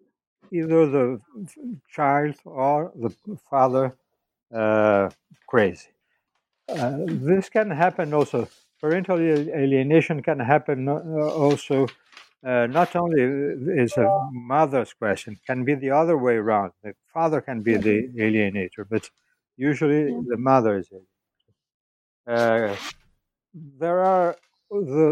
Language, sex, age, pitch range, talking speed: English, male, 60-79, 120-160 Hz, 110 wpm